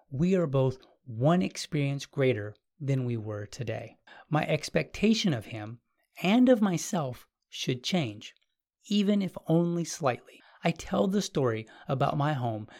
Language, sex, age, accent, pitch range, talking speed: English, male, 30-49, American, 120-165 Hz, 140 wpm